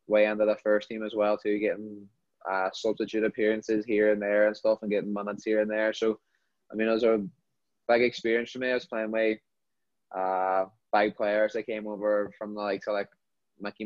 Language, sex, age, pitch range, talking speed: English, male, 20-39, 105-120 Hz, 210 wpm